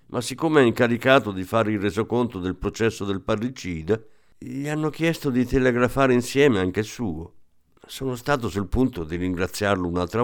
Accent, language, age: native, Italian, 50-69